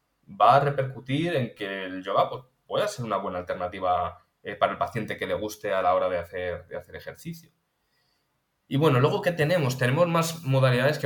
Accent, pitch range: Spanish, 110-140 Hz